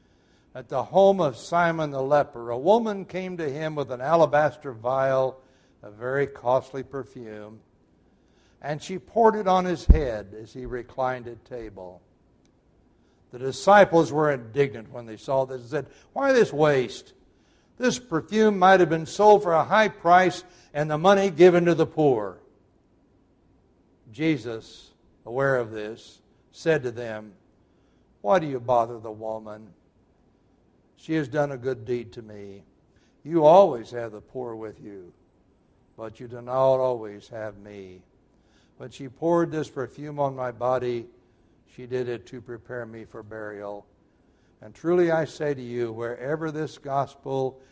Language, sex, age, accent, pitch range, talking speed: English, male, 60-79, American, 110-150 Hz, 155 wpm